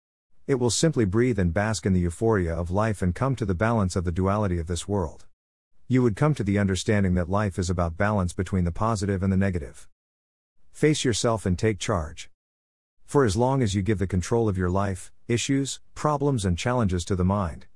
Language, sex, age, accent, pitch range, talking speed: English, male, 50-69, American, 90-115 Hz, 210 wpm